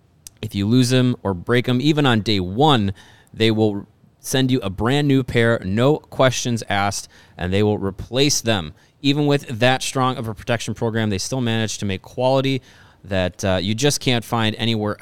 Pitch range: 100-130 Hz